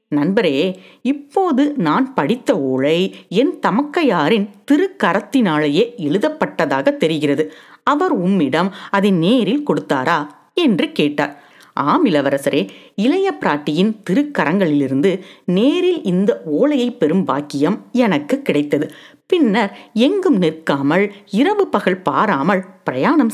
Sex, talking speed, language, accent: female, 90 wpm, Tamil, native